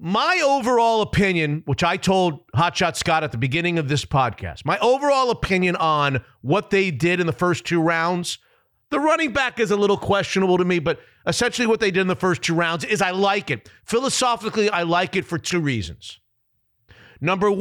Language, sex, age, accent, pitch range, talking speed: English, male, 40-59, American, 160-220 Hz, 195 wpm